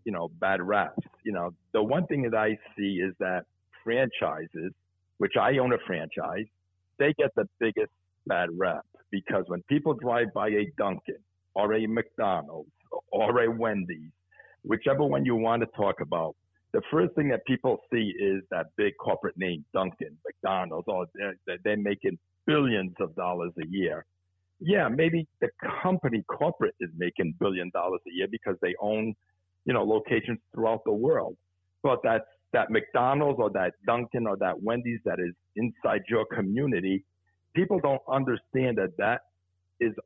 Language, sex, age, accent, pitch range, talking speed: English, male, 60-79, American, 90-115 Hz, 165 wpm